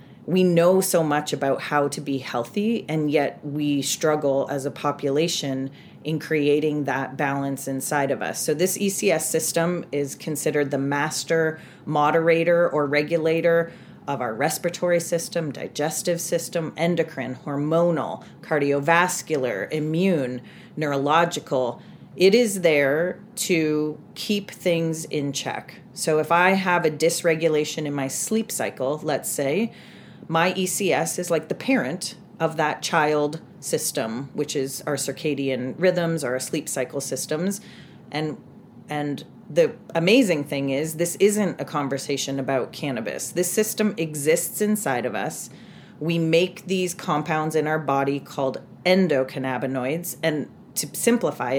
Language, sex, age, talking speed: English, female, 30-49, 135 wpm